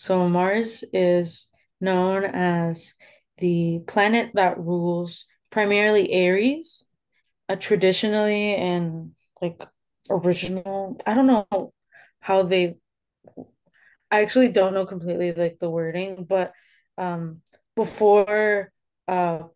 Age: 20-39